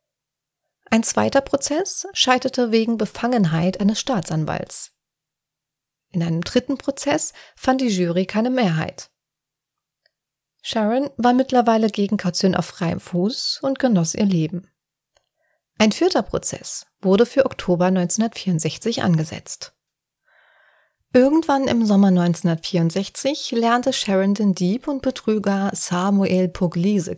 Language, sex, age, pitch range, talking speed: German, female, 30-49, 175-255 Hz, 110 wpm